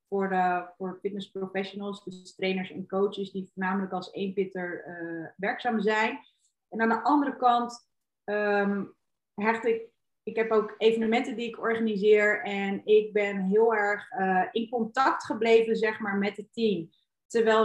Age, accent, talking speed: 30-49, Dutch, 155 wpm